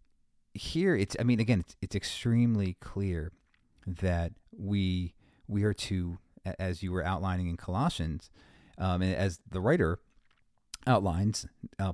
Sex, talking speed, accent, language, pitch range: male, 135 wpm, American, English, 85-105 Hz